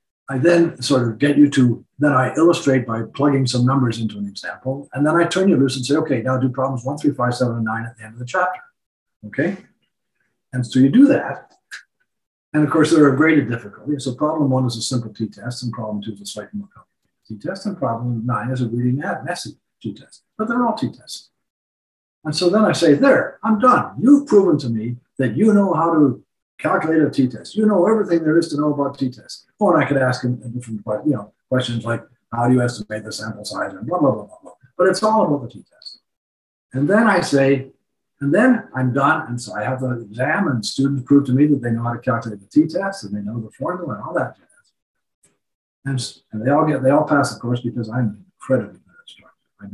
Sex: male